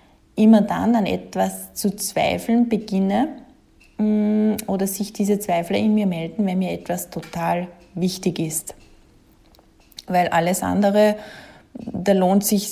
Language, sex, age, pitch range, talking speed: German, female, 20-39, 180-215 Hz, 125 wpm